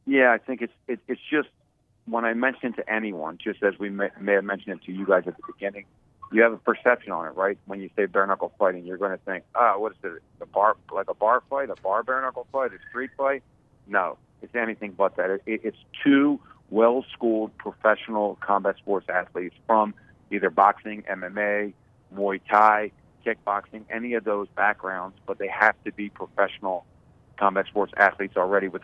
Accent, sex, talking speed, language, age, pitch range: American, male, 200 wpm, English, 40-59, 100-115 Hz